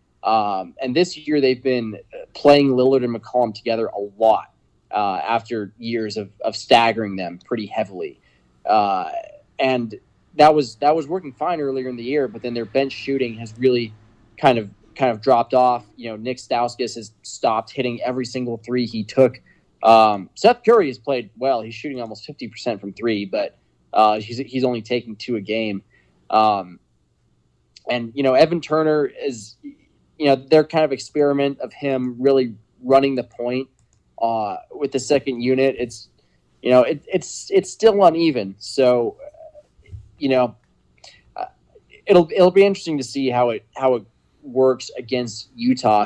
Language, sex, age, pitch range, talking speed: English, male, 20-39, 110-140 Hz, 170 wpm